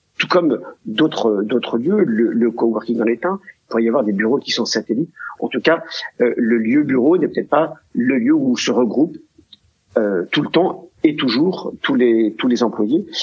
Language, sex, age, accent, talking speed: French, male, 50-69, French, 205 wpm